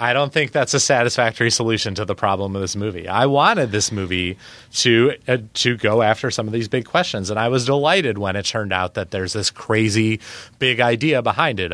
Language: English